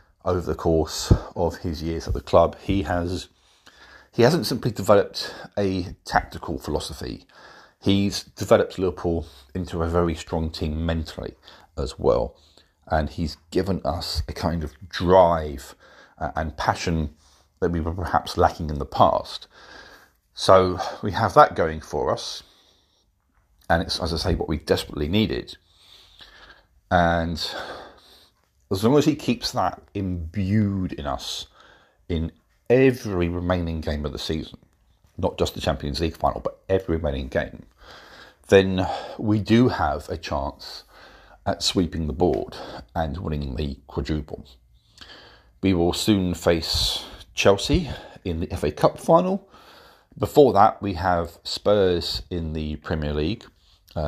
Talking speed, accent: 140 wpm, British